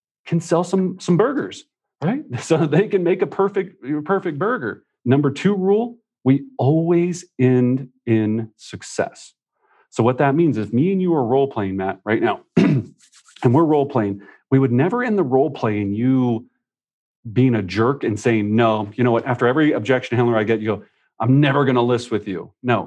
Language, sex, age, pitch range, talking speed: English, male, 40-59, 115-155 Hz, 180 wpm